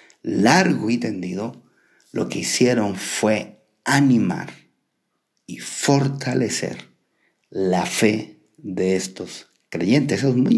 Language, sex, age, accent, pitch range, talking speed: Spanish, male, 40-59, Mexican, 100-130 Hz, 100 wpm